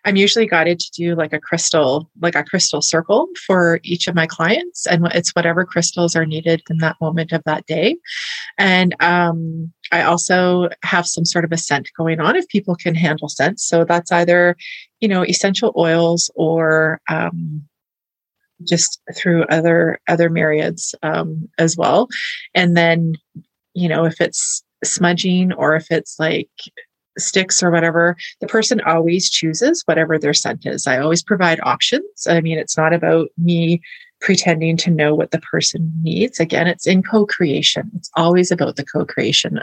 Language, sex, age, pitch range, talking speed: English, female, 30-49, 165-190 Hz, 170 wpm